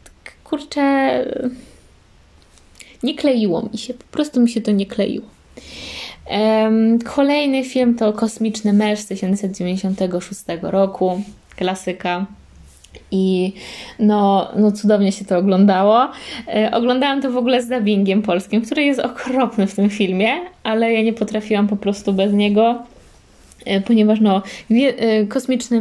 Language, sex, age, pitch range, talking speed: Polish, female, 20-39, 190-225 Hz, 120 wpm